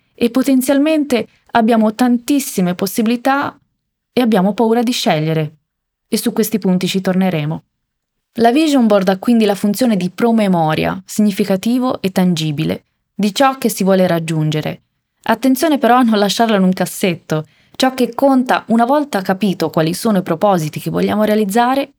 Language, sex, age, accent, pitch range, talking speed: Italian, female, 20-39, native, 175-230 Hz, 150 wpm